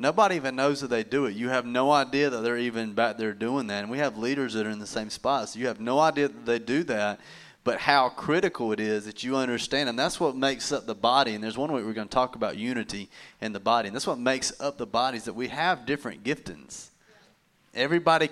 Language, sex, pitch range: English, male, 115-145 Hz